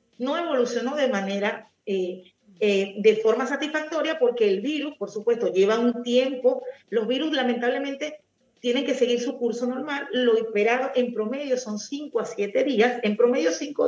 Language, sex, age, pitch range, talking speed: Spanish, female, 40-59, 215-265 Hz, 165 wpm